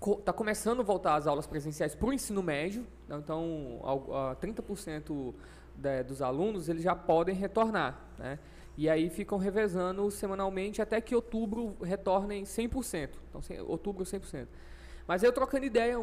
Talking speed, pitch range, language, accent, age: 145 wpm, 180-235 Hz, Portuguese, Brazilian, 20-39